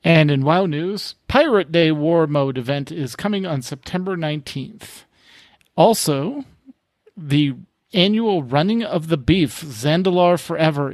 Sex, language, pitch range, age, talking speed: male, English, 145-180 Hz, 40-59, 125 wpm